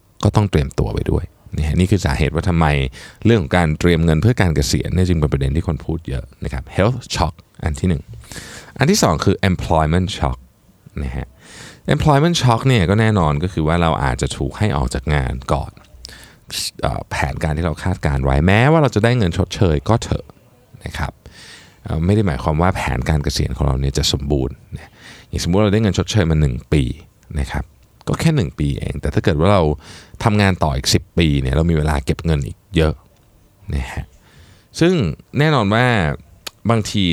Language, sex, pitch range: Thai, male, 75-105 Hz